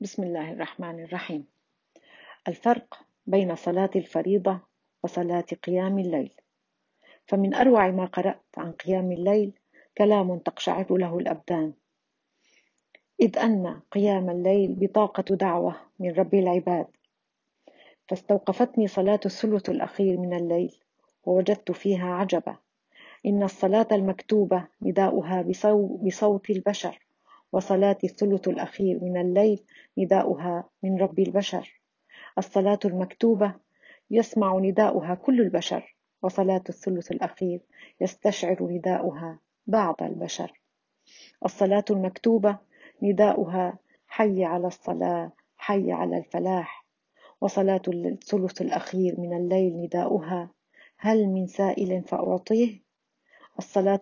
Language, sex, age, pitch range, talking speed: Arabic, female, 40-59, 180-205 Hz, 100 wpm